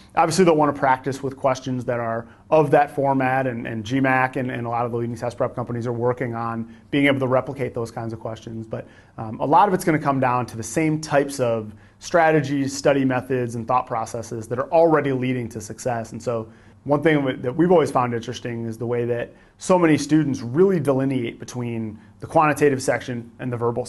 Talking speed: 220 wpm